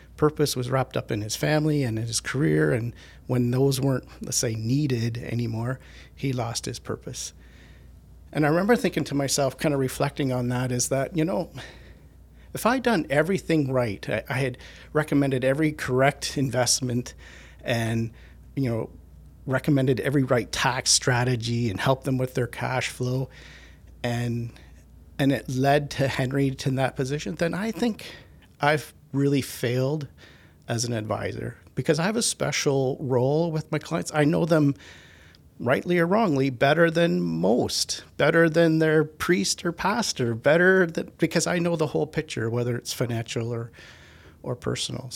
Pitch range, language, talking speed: 115-150 Hz, English, 160 wpm